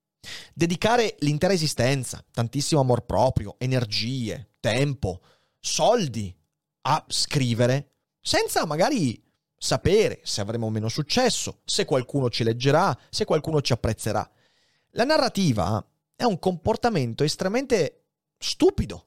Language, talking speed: Italian, 105 wpm